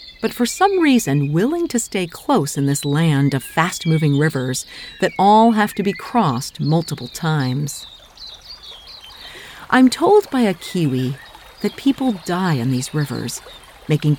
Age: 50-69